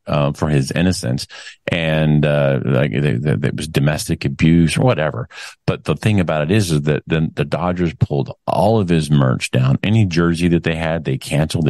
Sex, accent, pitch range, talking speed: male, American, 75-90 Hz, 190 wpm